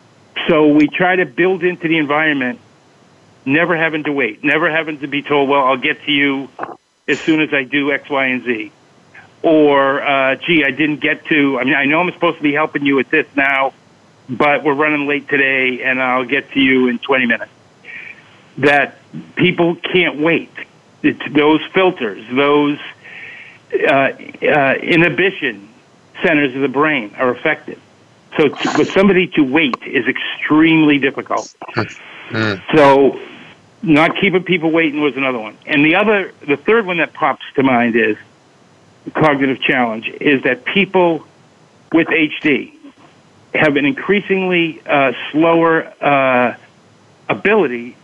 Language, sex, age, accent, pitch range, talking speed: English, male, 50-69, American, 140-170 Hz, 155 wpm